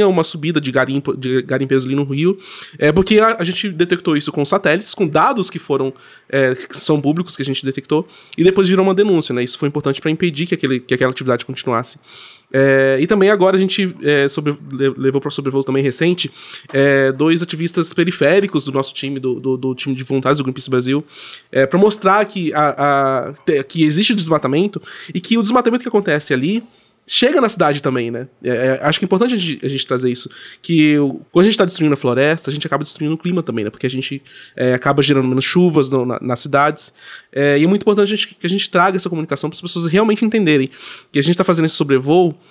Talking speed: 230 wpm